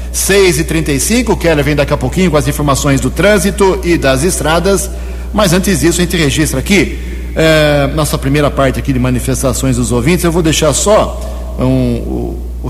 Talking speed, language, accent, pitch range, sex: 170 wpm, Portuguese, Brazilian, 120-155 Hz, male